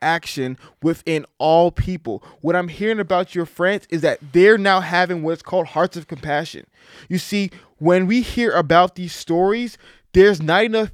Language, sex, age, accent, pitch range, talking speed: English, male, 20-39, American, 155-190 Hz, 170 wpm